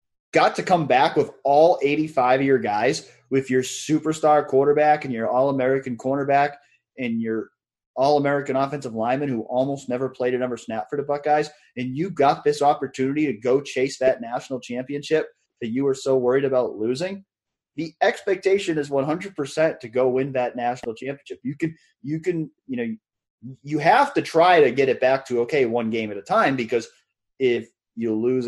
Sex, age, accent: male, 30-49, American